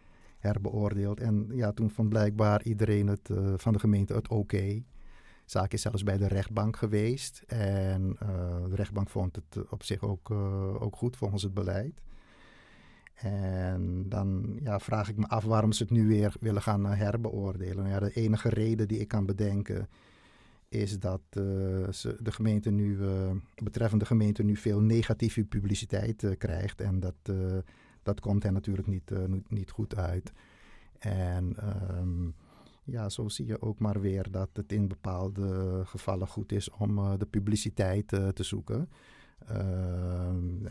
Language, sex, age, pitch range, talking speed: Dutch, male, 50-69, 95-110 Hz, 170 wpm